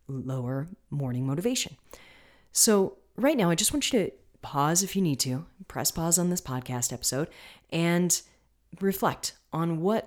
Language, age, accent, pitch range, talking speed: English, 30-49, American, 135-185 Hz, 155 wpm